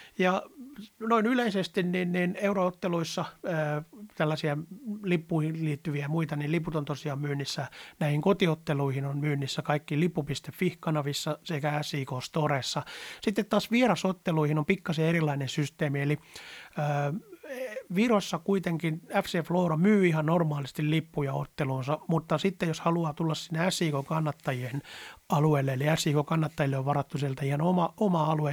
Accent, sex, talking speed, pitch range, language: native, male, 130 wpm, 145-175 Hz, Finnish